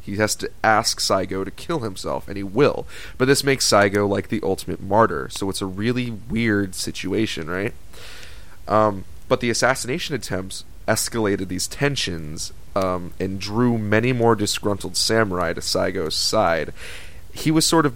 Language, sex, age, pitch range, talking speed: English, male, 30-49, 95-115 Hz, 160 wpm